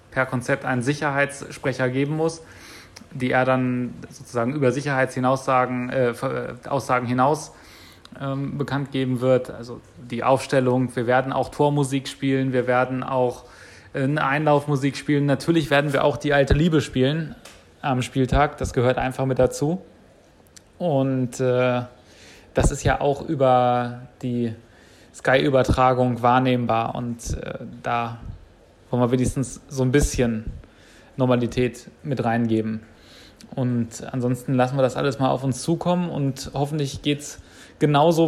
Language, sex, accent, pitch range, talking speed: German, male, German, 125-145 Hz, 130 wpm